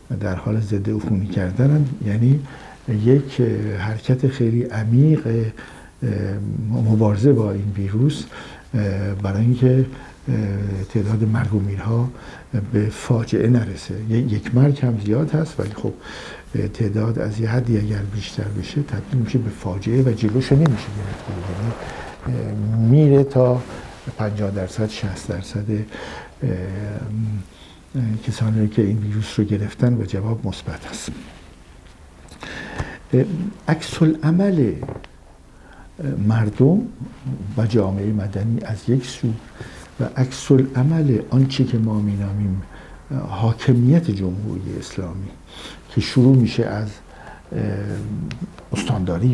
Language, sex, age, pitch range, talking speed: Persian, male, 60-79, 100-125 Hz, 105 wpm